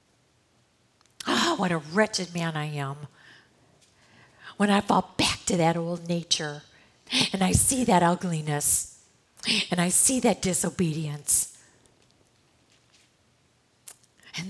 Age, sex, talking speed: 50-69, female, 110 wpm